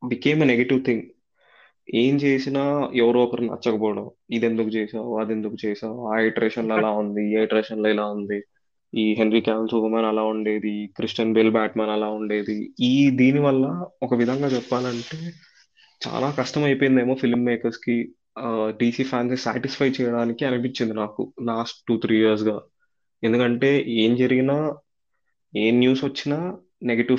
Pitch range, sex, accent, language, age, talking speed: 110-130 Hz, male, native, Telugu, 20-39, 130 wpm